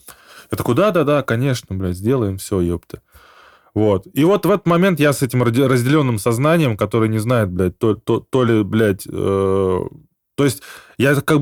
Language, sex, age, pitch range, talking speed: Russian, male, 20-39, 110-145 Hz, 180 wpm